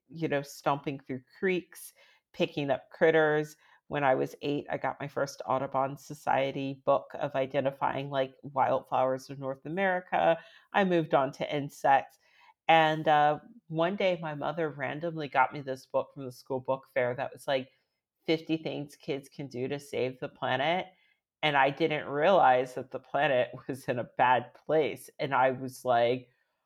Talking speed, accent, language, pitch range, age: 170 wpm, American, English, 130-170 Hz, 40-59